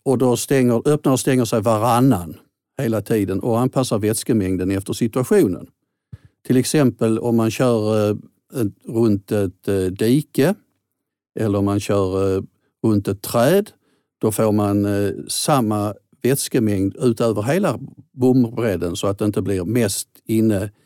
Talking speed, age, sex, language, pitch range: 130 wpm, 50-69, male, Swedish, 105-130 Hz